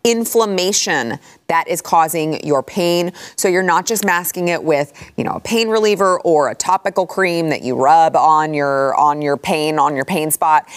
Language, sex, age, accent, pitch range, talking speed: English, female, 30-49, American, 155-195 Hz, 190 wpm